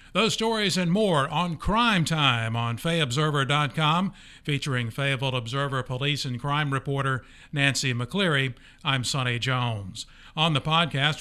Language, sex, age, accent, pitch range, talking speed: English, male, 50-69, American, 130-155 Hz, 130 wpm